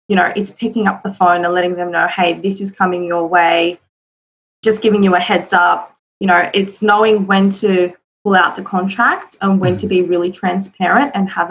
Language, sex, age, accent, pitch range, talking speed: English, female, 20-39, Australian, 175-195 Hz, 215 wpm